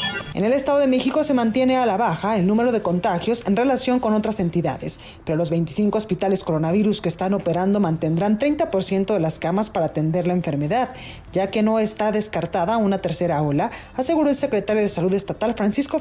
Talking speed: 190 wpm